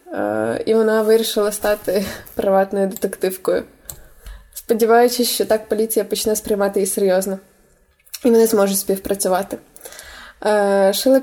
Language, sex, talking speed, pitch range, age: Ukrainian, female, 100 wpm, 200-235 Hz, 20-39